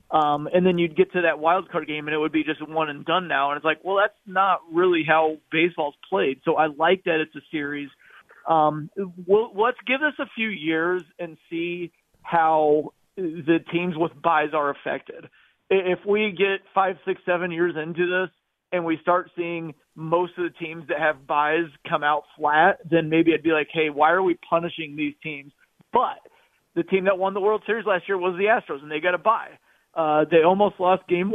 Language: English